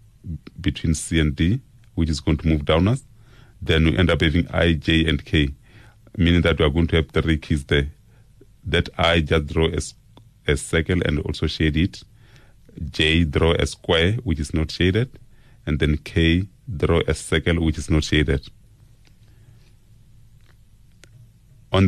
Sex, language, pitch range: male, English, 80-110 Hz